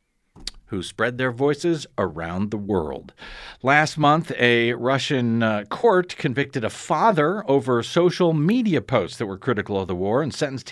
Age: 50-69